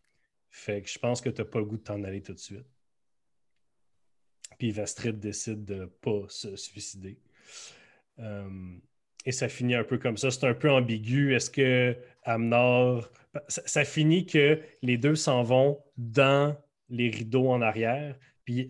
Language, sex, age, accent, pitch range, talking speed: French, male, 30-49, Canadian, 115-145 Hz, 160 wpm